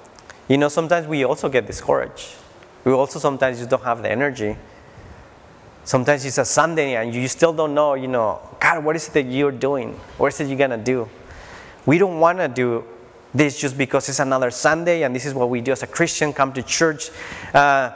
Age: 30-49